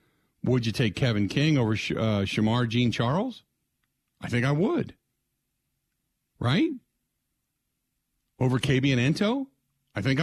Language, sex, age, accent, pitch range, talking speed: English, male, 50-69, American, 110-140 Hz, 135 wpm